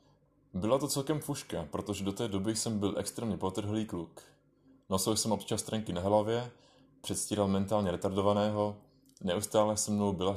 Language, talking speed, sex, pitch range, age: Czech, 150 wpm, male, 100-130 Hz, 20-39